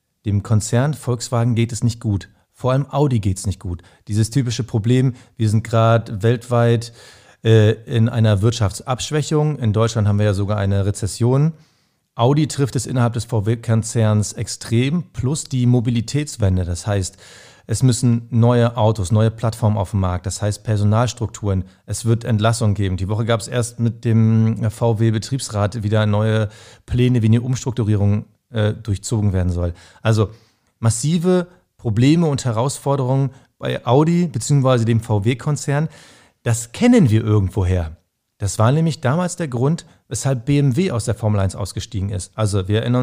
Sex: male